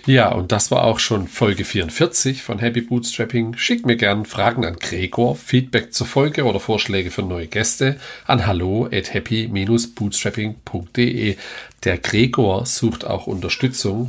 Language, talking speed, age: German, 140 wpm, 40-59